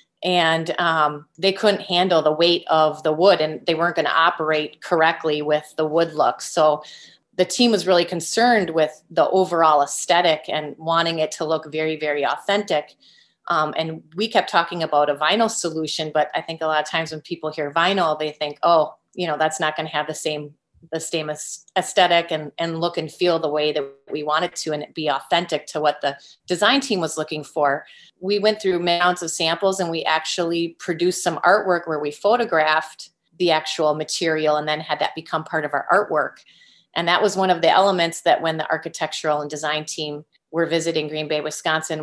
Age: 30-49